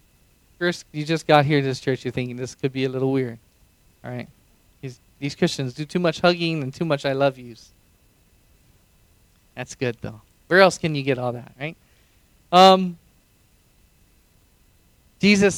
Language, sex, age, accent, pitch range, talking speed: English, male, 20-39, American, 125-195 Hz, 165 wpm